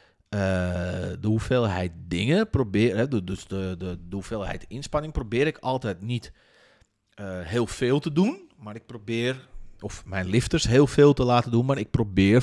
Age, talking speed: 40-59, 165 wpm